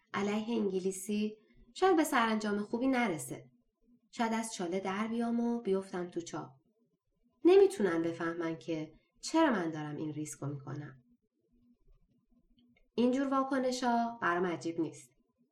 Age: 20-39